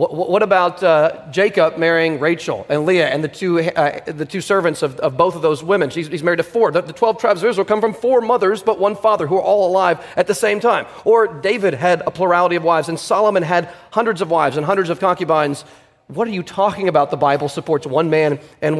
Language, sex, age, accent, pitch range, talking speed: English, male, 30-49, American, 160-200 Hz, 240 wpm